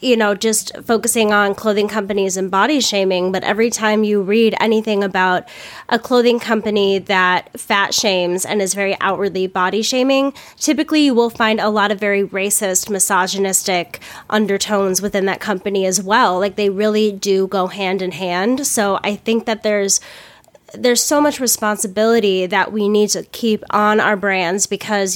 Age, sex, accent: 10-29, female, American